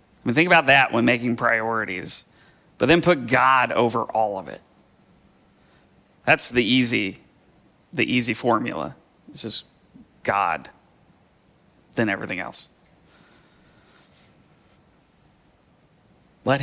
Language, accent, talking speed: English, American, 95 wpm